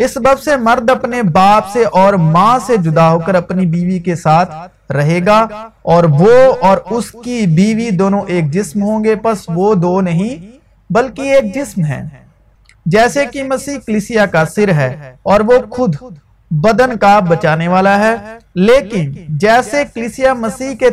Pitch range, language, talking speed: 175-235 Hz, Urdu, 165 wpm